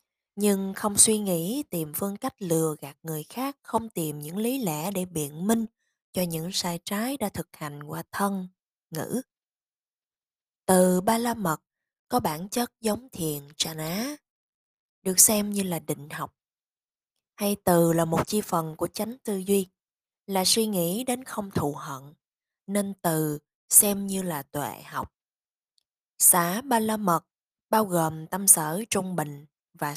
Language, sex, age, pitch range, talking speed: Vietnamese, female, 20-39, 165-215 Hz, 160 wpm